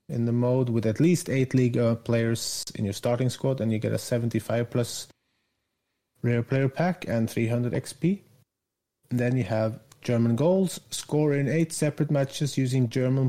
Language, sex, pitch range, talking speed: English, male, 115-140 Hz, 165 wpm